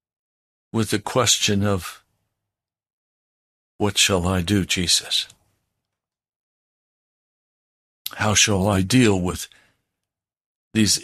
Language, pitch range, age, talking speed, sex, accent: English, 95-115 Hz, 60-79, 80 wpm, male, American